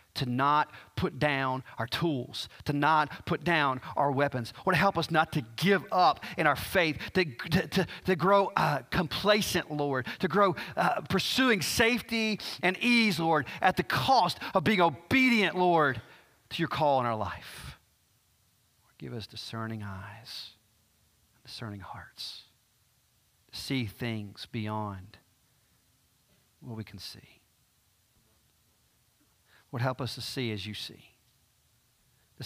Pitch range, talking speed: 110-155 Hz, 140 wpm